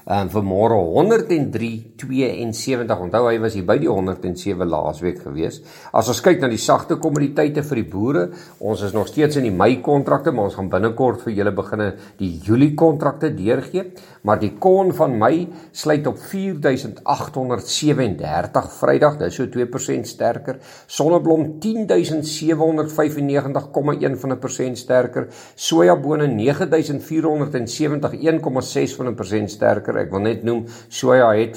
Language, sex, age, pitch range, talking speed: English, male, 50-69, 110-155 Hz, 140 wpm